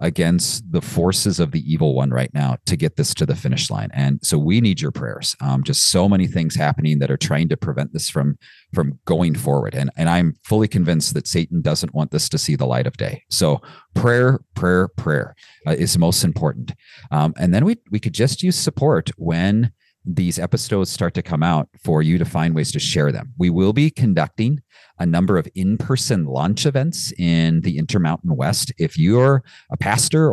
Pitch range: 80-125 Hz